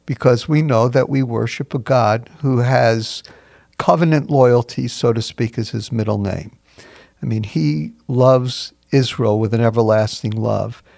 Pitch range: 115-145 Hz